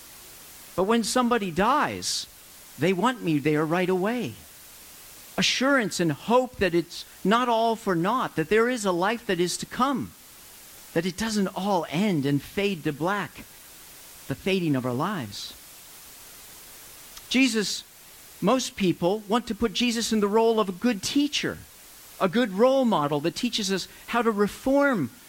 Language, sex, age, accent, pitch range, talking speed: English, male, 50-69, American, 175-235 Hz, 155 wpm